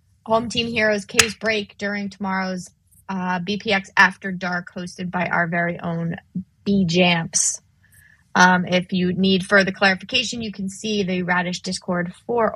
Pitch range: 180-210 Hz